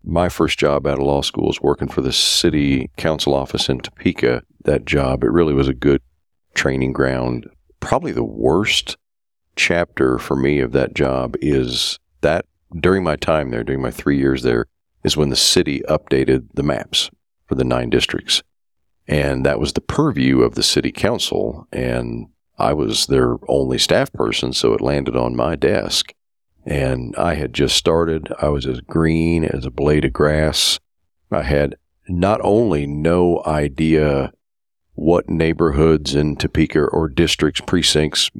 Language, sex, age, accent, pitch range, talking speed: English, male, 40-59, American, 70-80 Hz, 165 wpm